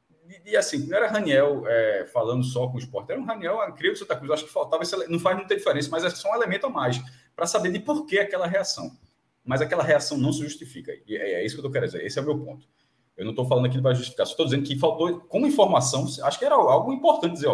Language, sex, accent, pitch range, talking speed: Portuguese, male, Brazilian, 125-180 Hz, 265 wpm